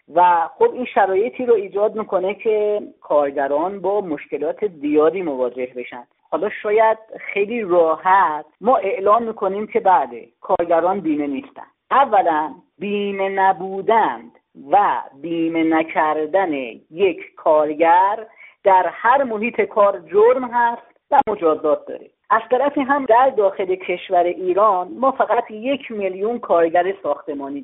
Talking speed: 120 wpm